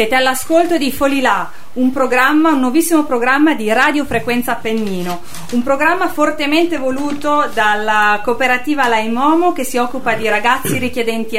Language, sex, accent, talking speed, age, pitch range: Italian, female, native, 130 wpm, 40-59, 215-280 Hz